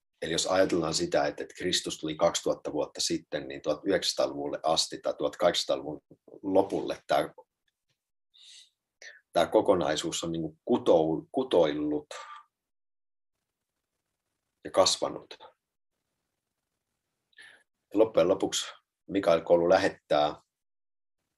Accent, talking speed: native, 80 wpm